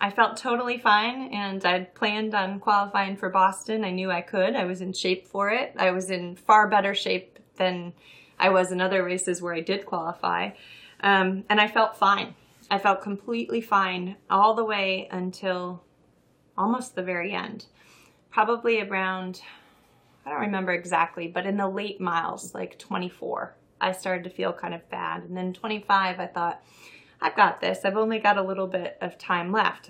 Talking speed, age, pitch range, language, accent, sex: 185 wpm, 20-39, 180-205 Hz, English, American, female